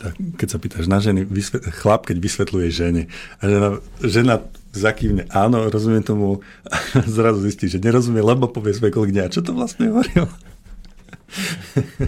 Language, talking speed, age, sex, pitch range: Slovak, 140 wpm, 50-69, male, 95-110 Hz